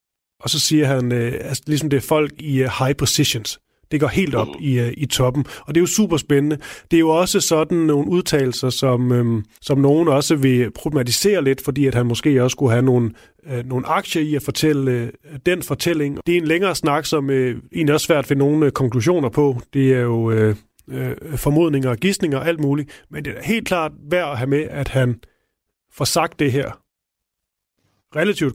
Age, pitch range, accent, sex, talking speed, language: 30-49, 130-165 Hz, native, male, 185 wpm, Danish